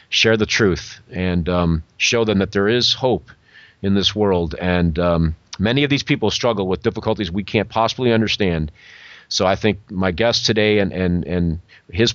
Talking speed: 185 wpm